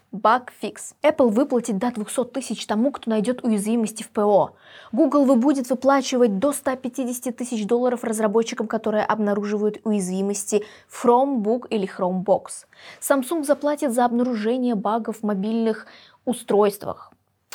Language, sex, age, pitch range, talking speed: Russian, female, 20-39, 200-245 Hz, 120 wpm